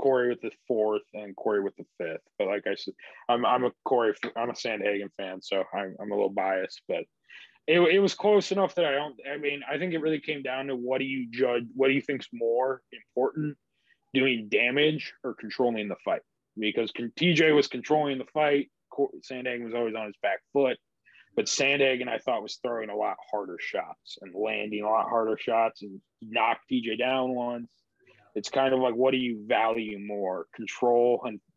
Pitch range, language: 110-135 Hz, English